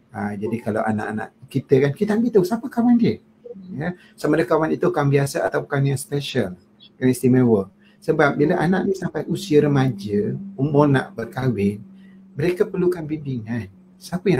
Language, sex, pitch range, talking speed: Malay, male, 115-180 Hz, 165 wpm